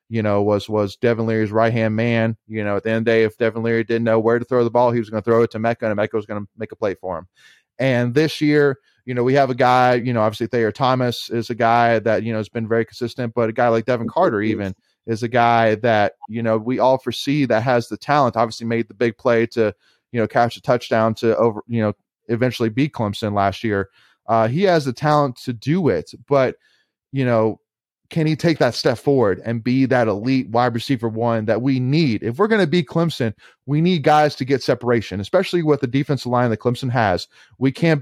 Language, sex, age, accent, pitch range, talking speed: English, male, 30-49, American, 115-140 Hz, 250 wpm